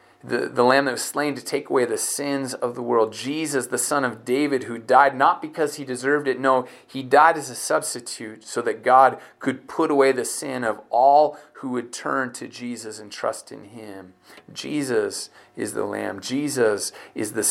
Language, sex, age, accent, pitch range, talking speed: English, male, 30-49, American, 120-145 Hz, 200 wpm